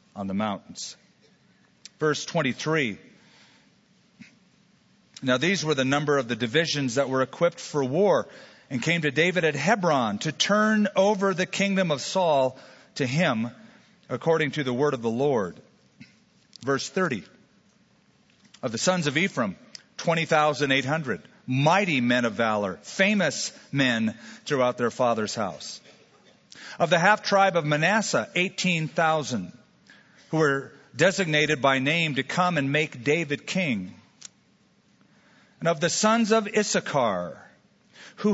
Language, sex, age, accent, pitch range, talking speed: English, male, 40-59, American, 140-195 Hz, 130 wpm